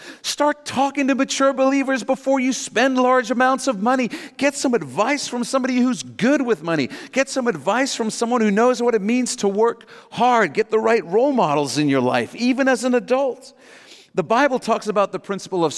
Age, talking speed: 50-69, 200 wpm